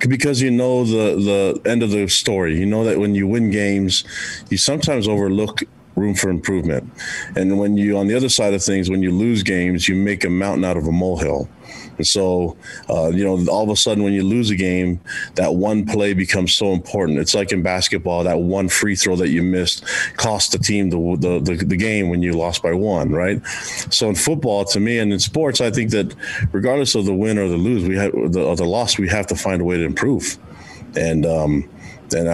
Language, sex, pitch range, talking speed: English, male, 90-105 Hz, 225 wpm